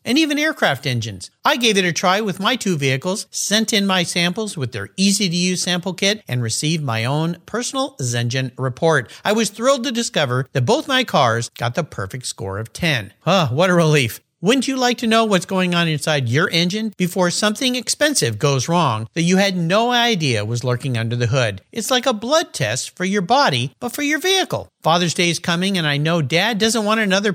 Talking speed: 215 wpm